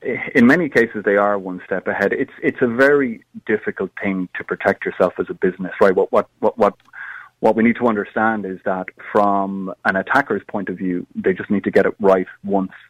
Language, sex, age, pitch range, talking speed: English, male, 30-49, 95-115 Hz, 215 wpm